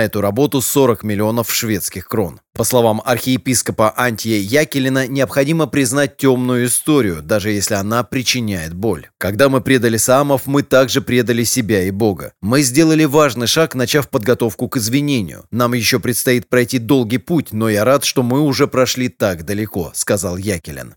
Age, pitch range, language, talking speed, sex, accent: 30-49, 110-140 Hz, Russian, 160 wpm, male, native